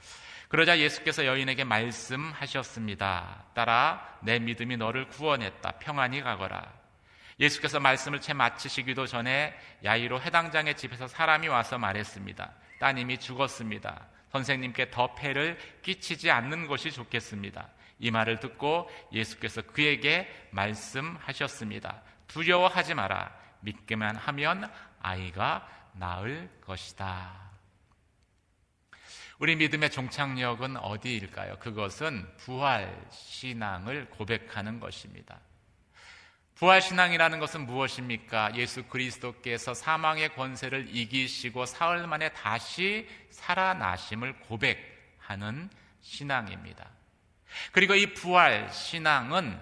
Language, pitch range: Korean, 105-145 Hz